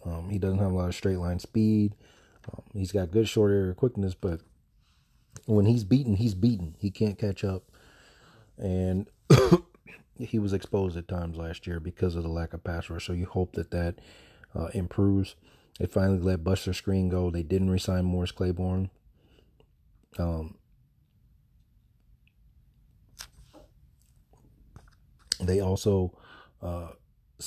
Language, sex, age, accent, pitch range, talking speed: English, male, 30-49, American, 85-100 Hz, 140 wpm